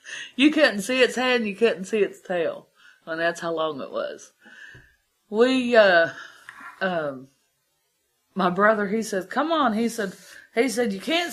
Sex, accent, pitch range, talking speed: female, American, 215-350 Hz, 170 wpm